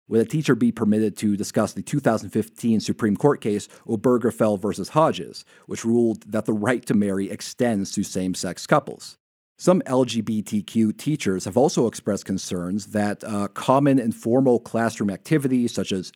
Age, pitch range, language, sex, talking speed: 40-59, 100-125 Hz, English, male, 150 wpm